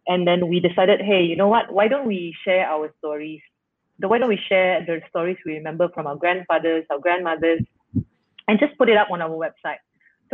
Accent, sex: Malaysian, female